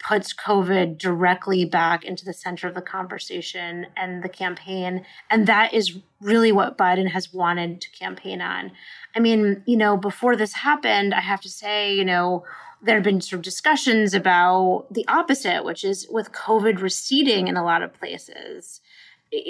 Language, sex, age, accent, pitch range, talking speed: English, female, 30-49, American, 185-230 Hz, 175 wpm